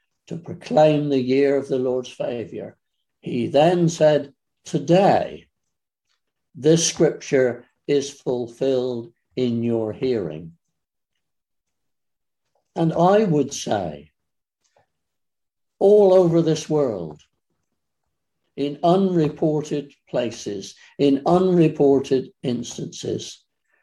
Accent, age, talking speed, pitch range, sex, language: British, 60-79, 85 wpm, 130-170 Hz, male, English